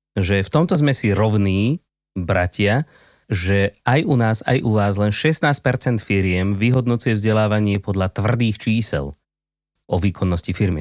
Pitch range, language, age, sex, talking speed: 90-120 Hz, Slovak, 30-49, male, 140 wpm